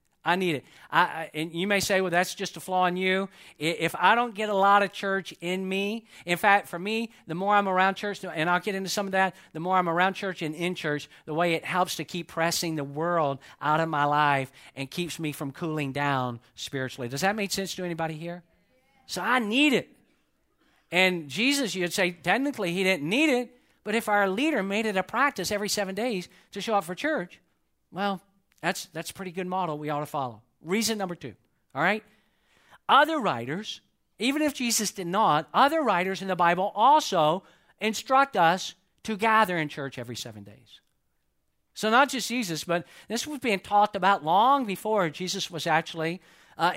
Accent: American